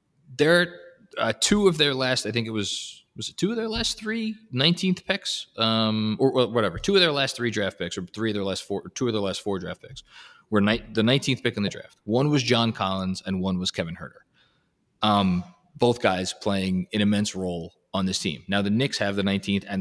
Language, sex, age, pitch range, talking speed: English, male, 20-39, 105-165 Hz, 245 wpm